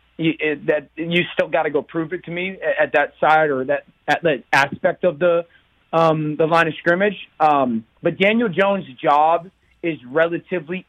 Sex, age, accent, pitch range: male, 30-49, American, 160-205 Hz